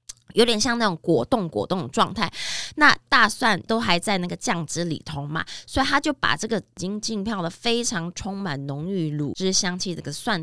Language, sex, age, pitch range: Chinese, female, 20-39, 165-235 Hz